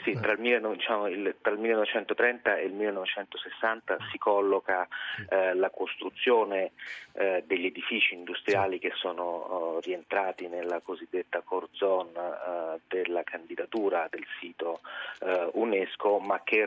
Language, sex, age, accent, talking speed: Italian, male, 30-49, native, 100 wpm